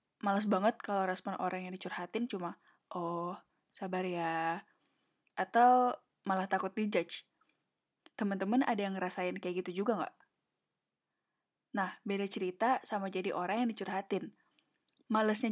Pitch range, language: 185-235 Hz, Indonesian